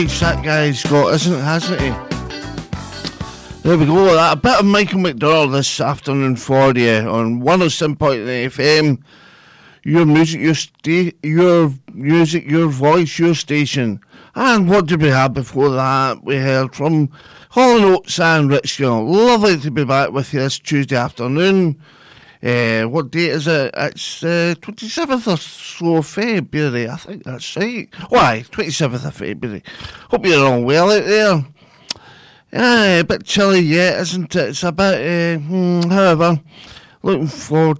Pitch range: 140-180 Hz